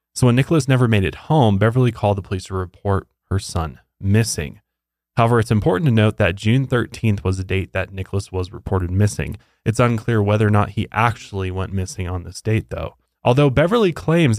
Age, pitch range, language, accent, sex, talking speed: 20-39, 95-115 Hz, English, American, male, 200 wpm